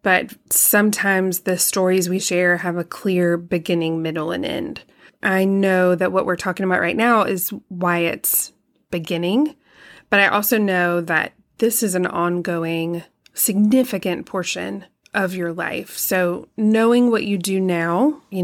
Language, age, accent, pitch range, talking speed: English, 20-39, American, 175-200 Hz, 155 wpm